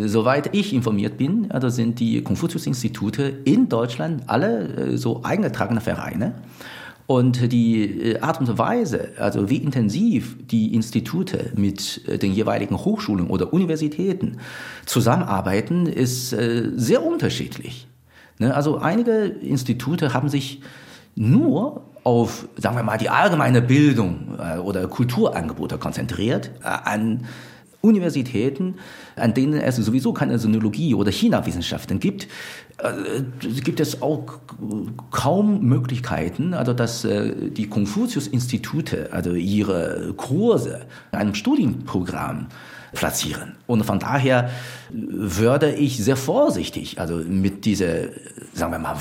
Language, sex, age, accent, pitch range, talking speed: German, male, 50-69, German, 110-145 Hz, 110 wpm